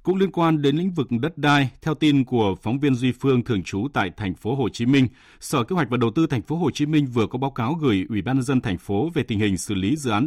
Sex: male